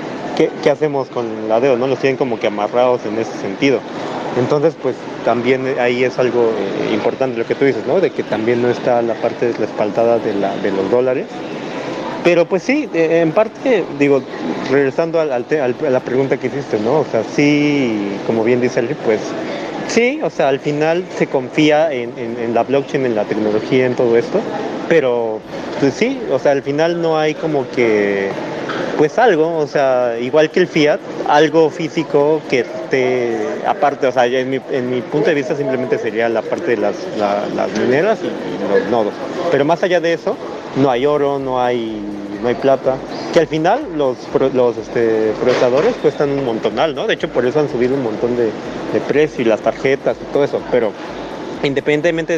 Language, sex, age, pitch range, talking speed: Spanish, male, 30-49, 120-150 Hz, 200 wpm